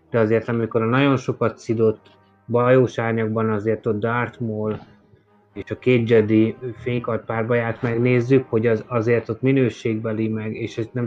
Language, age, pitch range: Hungarian, 20-39, 105-120 Hz